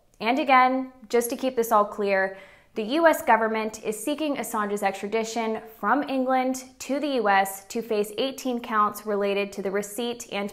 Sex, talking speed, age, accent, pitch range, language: female, 165 wpm, 20-39, American, 210-260 Hz, English